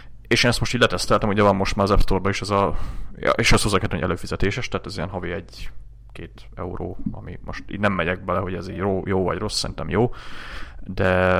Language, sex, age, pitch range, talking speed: Hungarian, male, 30-49, 90-110 Hz, 220 wpm